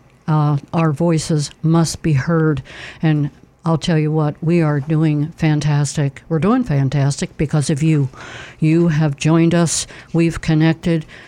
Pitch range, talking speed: 145-170 Hz, 145 wpm